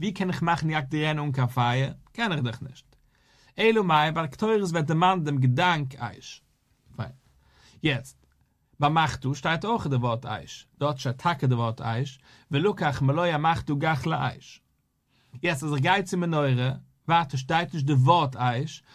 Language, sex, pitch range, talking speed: English, male, 130-175 Hz, 150 wpm